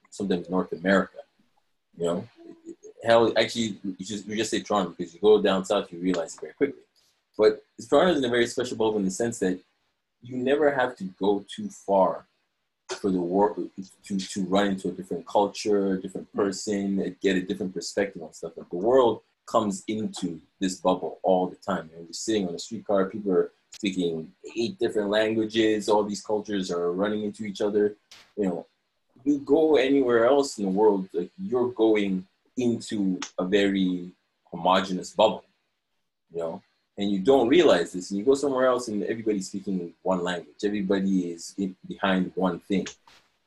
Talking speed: 185 wpm